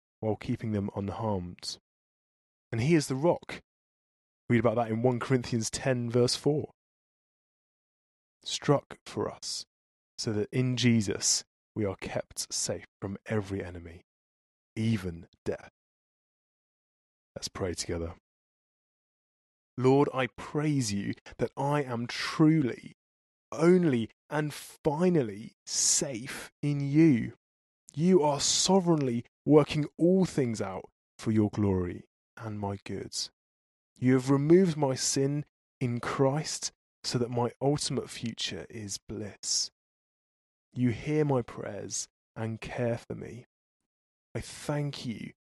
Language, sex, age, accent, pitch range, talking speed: English, male, 20-39, British, 100-135 Hz, 115 wpm